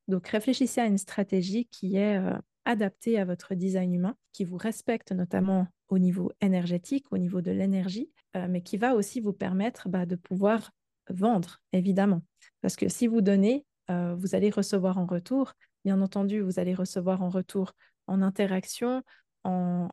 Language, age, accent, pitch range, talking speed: French, 20-39, French, 185-215 Hz, 170 wpm